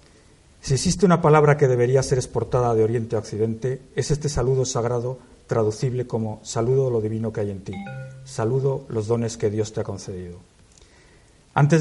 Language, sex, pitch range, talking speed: Spanish, male, 110-135 Hz, 175 wpm